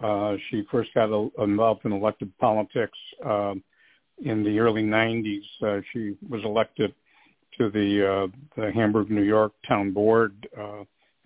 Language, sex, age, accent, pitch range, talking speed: English, male, 60-79, American, 105-115 Hz, 140 wpm